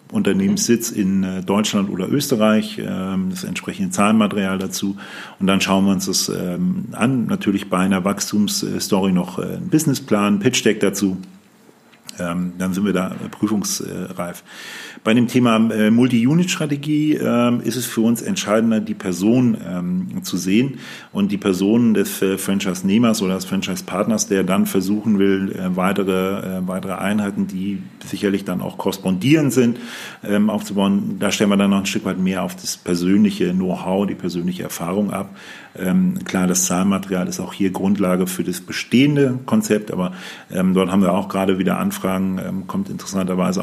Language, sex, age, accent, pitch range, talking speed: German, male, 40-59, German, 95-120 Hz, 145 wpm